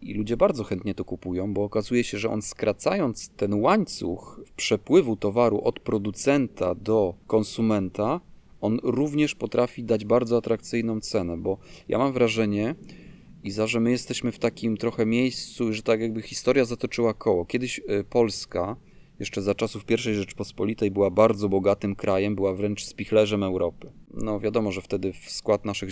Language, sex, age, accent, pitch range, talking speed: Polish, male, 30-49, native, 100-115 Hz, 155 wpm